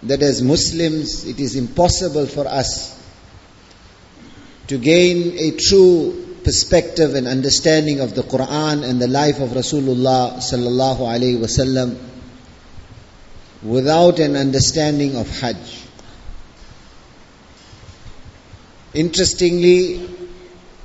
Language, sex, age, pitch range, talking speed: Finnish, male, 50-69, 105-160 Hz, 90 wpm